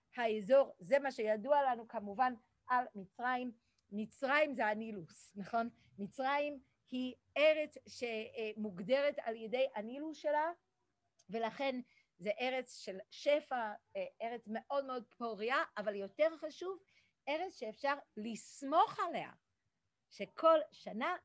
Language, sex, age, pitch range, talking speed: Hebrew, female, 50-69, 205-280 Hz, 105 wpm